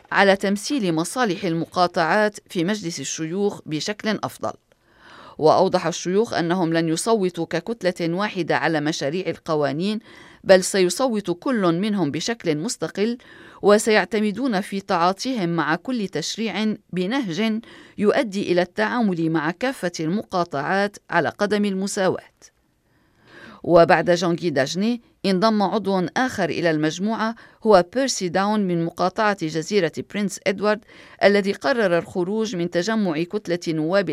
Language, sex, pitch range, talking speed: Arabic, female, 170-210 Hz, 115 wpm